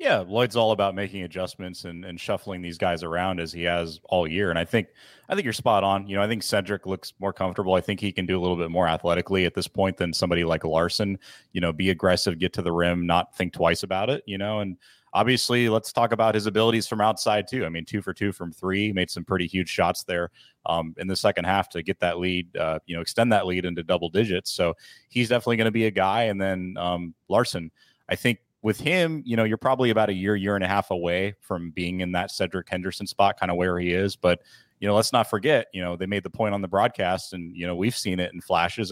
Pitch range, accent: 90-105 Hz, American